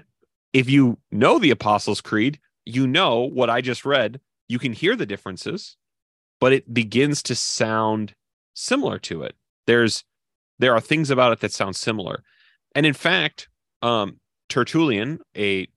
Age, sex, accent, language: 30-49, male, American, English